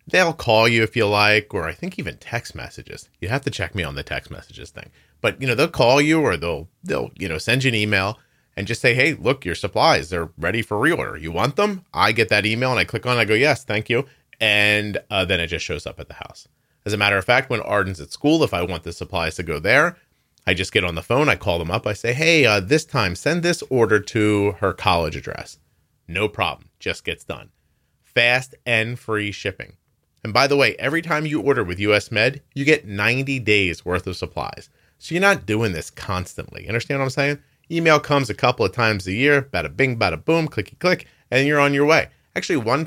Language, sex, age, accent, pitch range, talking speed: English, male, 30-49, American, 100-145 Hz, 245 wpm